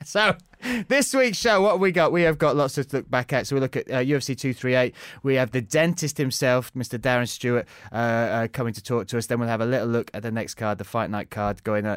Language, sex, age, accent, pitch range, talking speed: English, male, 30-49, British, 115-135 Hz, 265 wpm